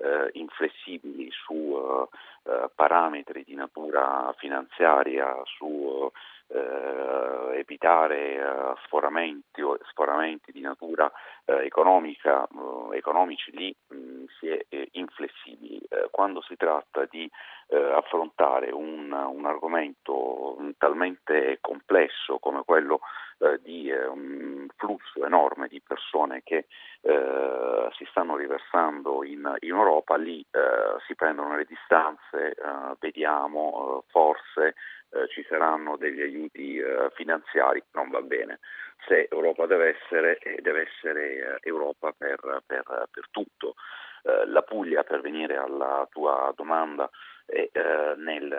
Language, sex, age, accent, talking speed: Italian, male, 40-59, native, 120 wpm